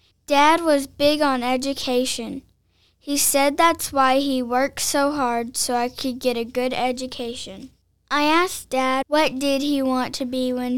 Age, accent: 10-29, American